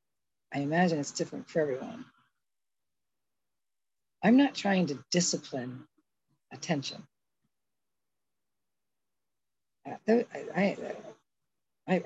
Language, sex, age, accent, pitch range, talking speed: English, female, 50-69, American, 145-185 Hz, 70 wpm